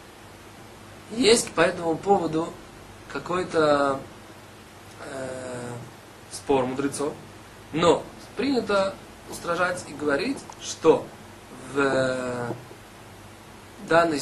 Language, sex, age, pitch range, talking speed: Russian, male, 20-39, 115-160 Hz, 70 wpm